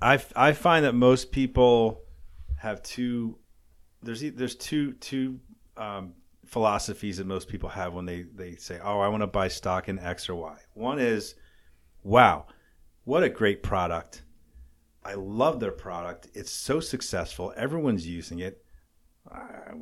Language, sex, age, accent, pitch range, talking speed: English, male, 40-59, American, 80-110 Hz, 150 wpm